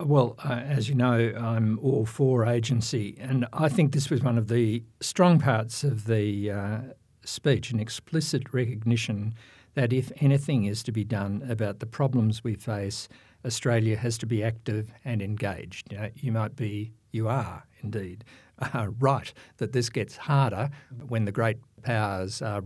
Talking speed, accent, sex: 165 wpm, Australian, male